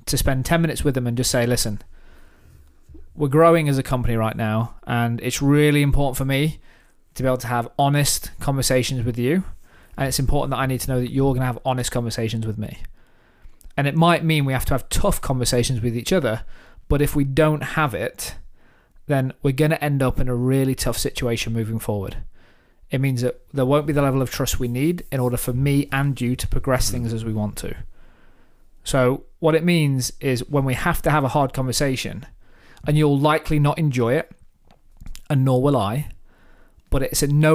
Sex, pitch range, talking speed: male, 120-140 Hz, 215 wpm